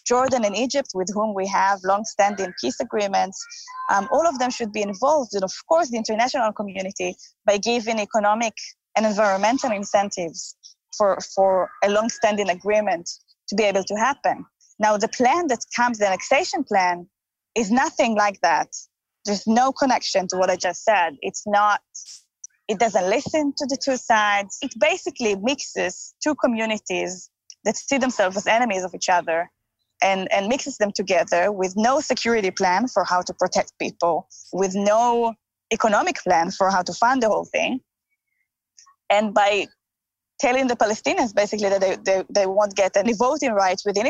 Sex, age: female, 20-39